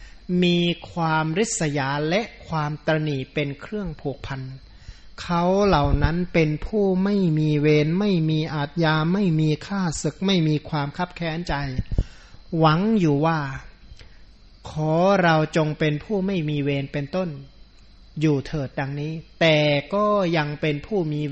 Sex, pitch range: male, 145-170 Hz